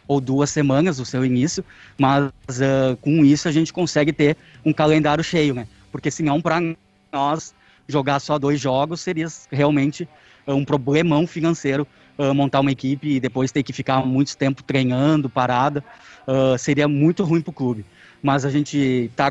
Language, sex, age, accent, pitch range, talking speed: Portuguese, male, 20-39, Brazilian, 130-150 Hz, 175 wpm